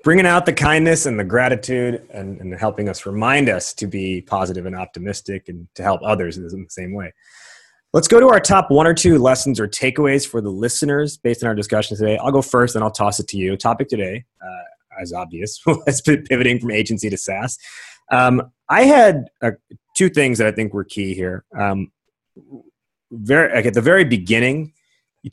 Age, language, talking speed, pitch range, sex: 20-39, English, 200 wpm, 100-135 Hz, male